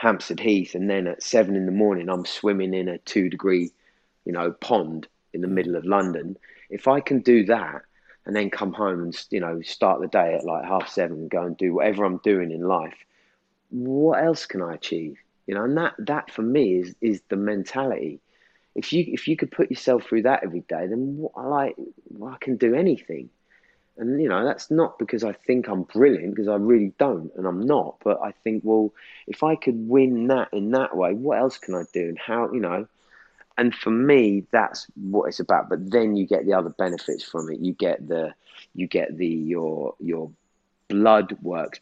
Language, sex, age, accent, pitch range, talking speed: English, male, 30-49, British, 90-115 Hz, 215 wpm